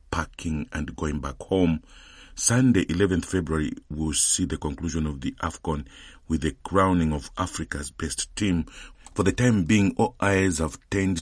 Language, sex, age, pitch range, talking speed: English, male, 50-69, 75-90 Hz, 160 wpm